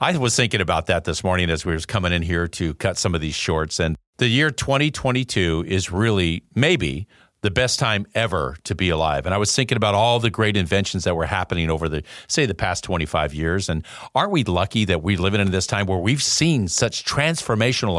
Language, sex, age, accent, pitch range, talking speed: English, male, 50-69, American, 85-120 Hz, 225 wpm